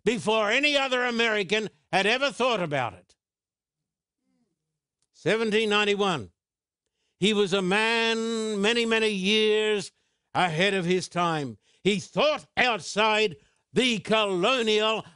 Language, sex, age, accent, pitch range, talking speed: English, male, 60-79, American, 180-220 Hz, 105 wpm